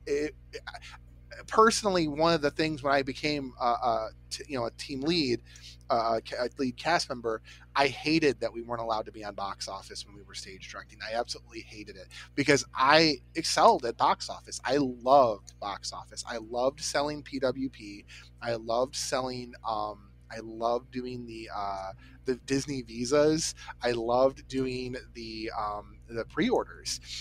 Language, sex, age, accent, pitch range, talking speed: English, male, 30-49, American, 100-145 Hz, 170 wpm